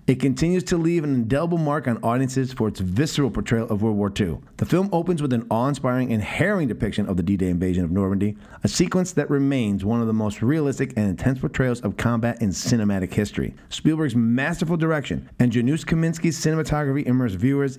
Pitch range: 105-135 Hz